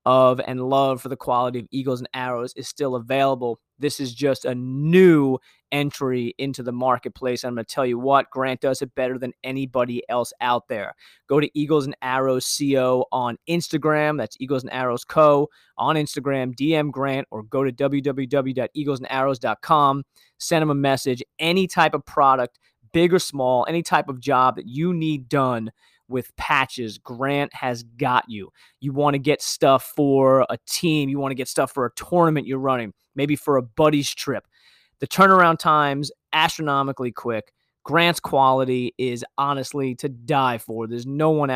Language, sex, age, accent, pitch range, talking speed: English, male, 20-39, American, 125-145 Hz, 175 wpm